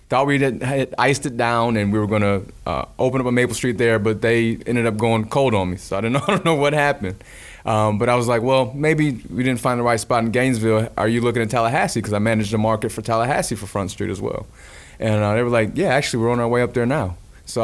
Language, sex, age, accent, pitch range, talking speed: English, male, 20-39, American, 105-120 Hz, 265 wpm